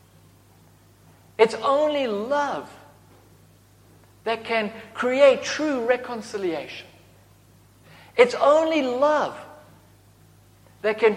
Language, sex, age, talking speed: English, male, 50-69, 70 wpm